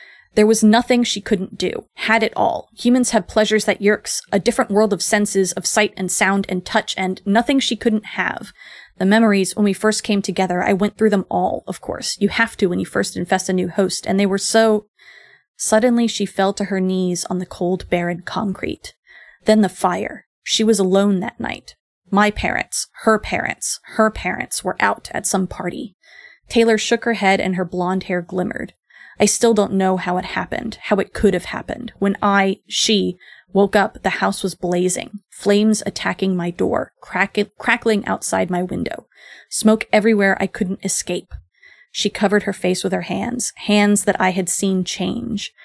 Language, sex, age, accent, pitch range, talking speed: English, female, 20-39, American, 185-220 Hz, 190 wpm